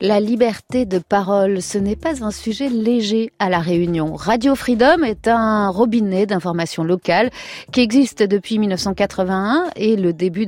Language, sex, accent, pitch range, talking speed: French, female, French, 205-280 Hz, 155 wpm